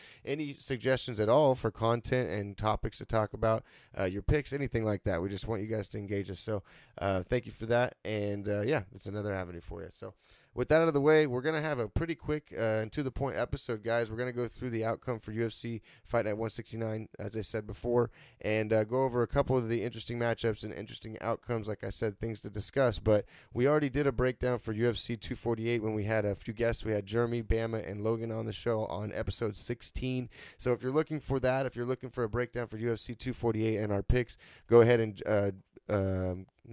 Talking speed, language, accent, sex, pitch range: 235 wpm, English, American, male, 105-125 Hz